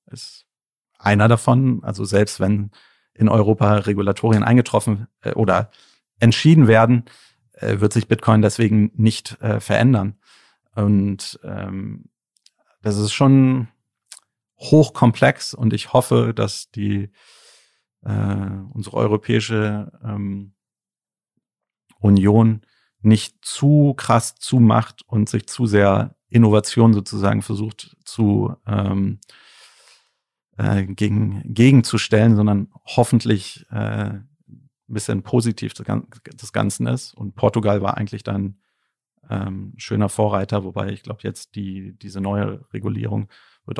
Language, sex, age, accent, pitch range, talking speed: German, male, 40-59, German, 100-120 Hz, 110 wpm